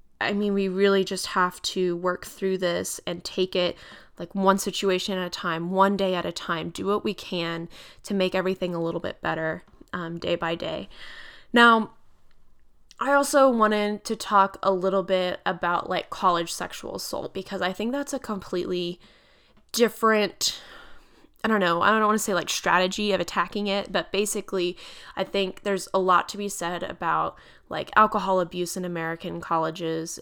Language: English